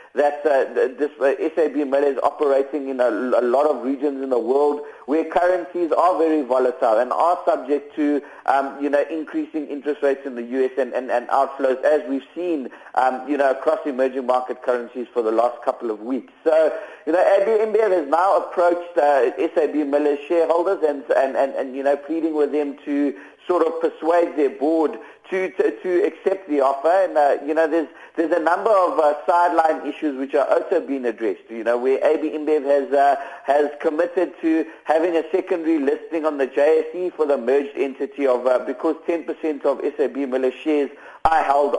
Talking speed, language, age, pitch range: 190 wpm, English, 50-69, 135-165 Hz